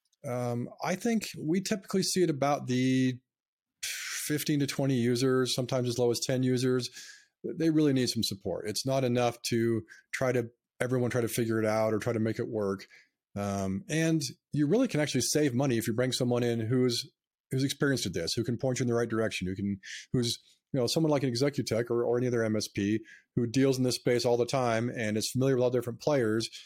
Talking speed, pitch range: 220 wpm, 110-135 Hz